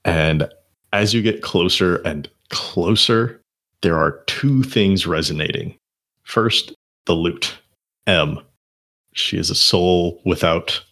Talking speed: 115 wpm